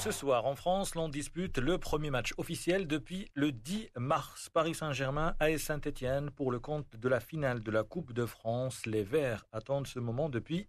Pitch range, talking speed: 120-155 Hz, 195 wpm